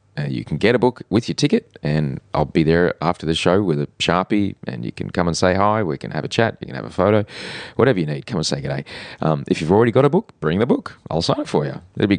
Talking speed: 295 wpm